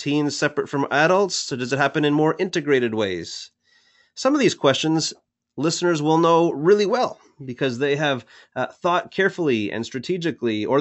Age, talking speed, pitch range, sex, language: 30-49, 165 wpm, 120-155 Hz, male, English